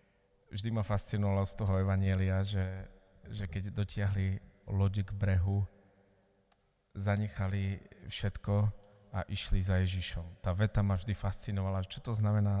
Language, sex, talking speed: Slovak, male, 130 wpm